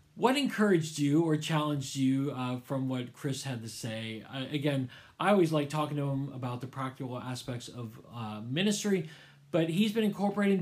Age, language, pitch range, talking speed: 40-59, English, 135-180 Hz, 175 wpm